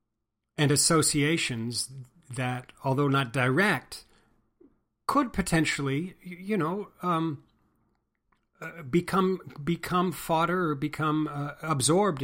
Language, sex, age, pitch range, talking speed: English, male, 40-59, 125-165 Hz, 95 wpm